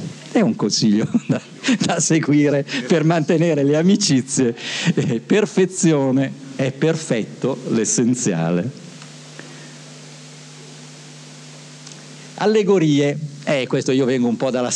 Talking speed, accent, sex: 95 wpm, native, male